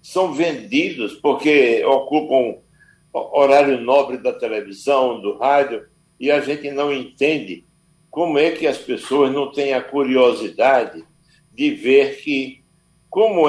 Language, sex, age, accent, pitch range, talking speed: Portuguese, male, 60-79, Brazilian, 140-225 Hz, 120 wpm